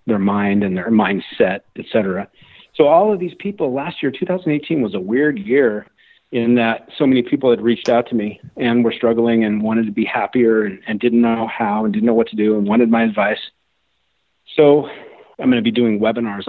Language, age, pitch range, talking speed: English, 40-59, 105-135 Hz, 210 wpm